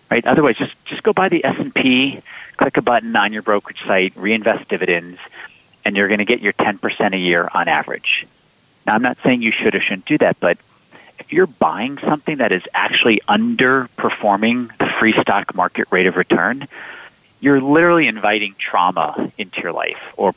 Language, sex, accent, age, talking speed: English, male, American, 40-59, 185 wpm